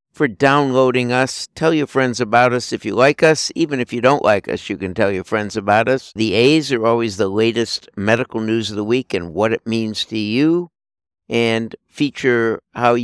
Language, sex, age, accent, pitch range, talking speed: English, male, 60-79, American, 100-125 Hz, 205 wpm